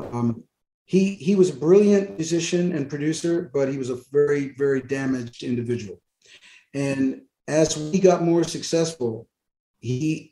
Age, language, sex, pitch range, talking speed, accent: 50-69, English, male, 125-155 Hz, 140 wpm, American